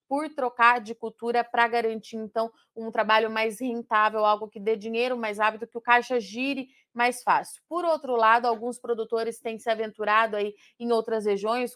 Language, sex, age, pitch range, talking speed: Portuguese, female, 30-49, 220-240 Hz, 180 wpm